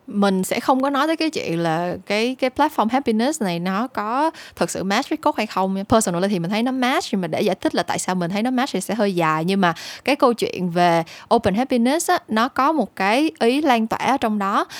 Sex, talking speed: female, 260 wpm